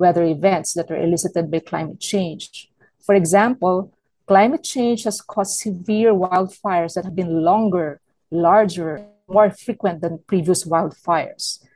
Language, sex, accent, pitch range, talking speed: English, female, Filipino, 175-210 Hz, 135 wpm